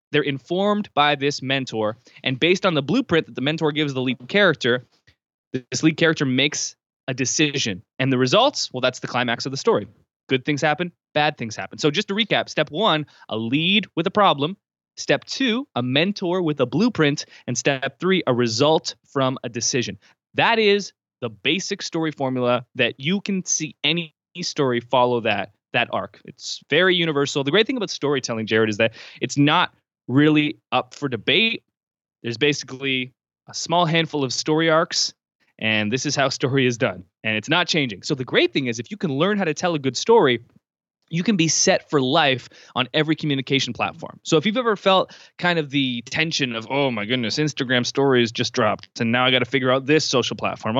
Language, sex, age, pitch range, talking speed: English, male, 20-39, 125-165 Hz, 200 wpm